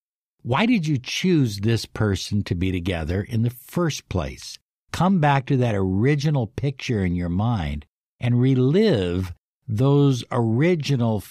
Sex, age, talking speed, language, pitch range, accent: male, 60-79, 140 wpm, English, 95-135 Hz, American